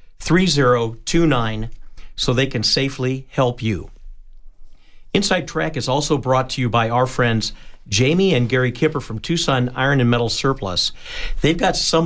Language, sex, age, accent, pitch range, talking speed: English, male, 50-69, American, 115-140 Hz, 165 wpm